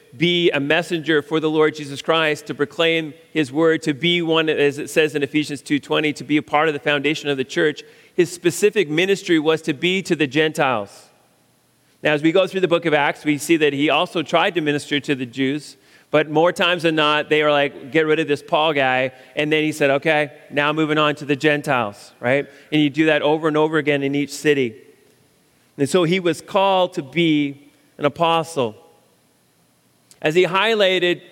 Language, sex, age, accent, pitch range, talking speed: English, male, 40-59, American, 145-175 Hz, 210 wpm